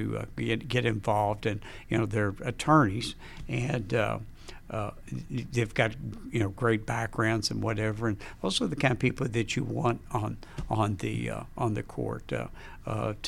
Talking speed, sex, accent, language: 165 wpm, male, American, English